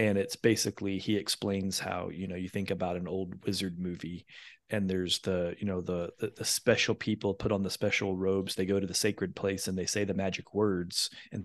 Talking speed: 220 wpm